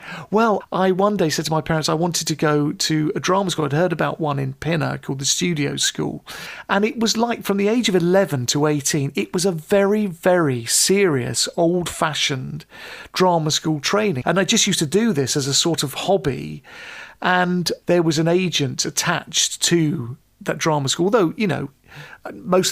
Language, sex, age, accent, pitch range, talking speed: English, male, 40-59, British, 145-180 Hz, 195 wpm